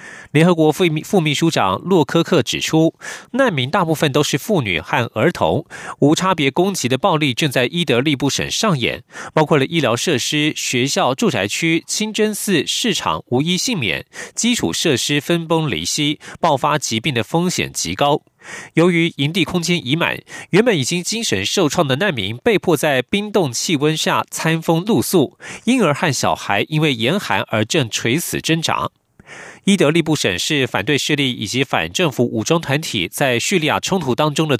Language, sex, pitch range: German, male, 135-175 Hz